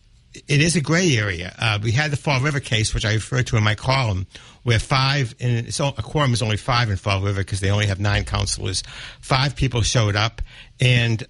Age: 60-79